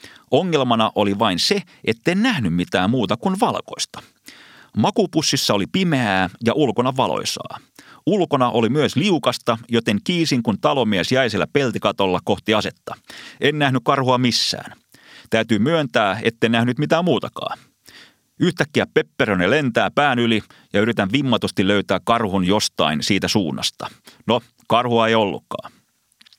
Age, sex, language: 30-49, male, Finnish